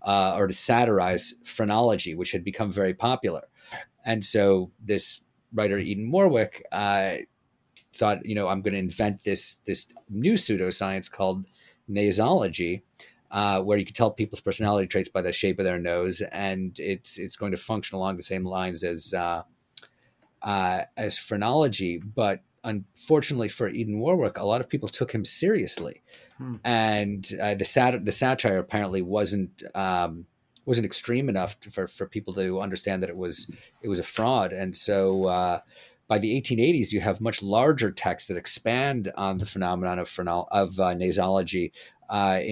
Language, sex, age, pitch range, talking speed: English, male, 30-49, 95-110 Hz, 170 wpm